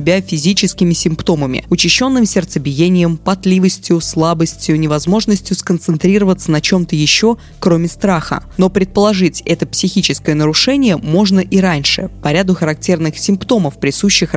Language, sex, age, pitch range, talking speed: Russian, female, 20-39, 160-200 Hz, 110 wpm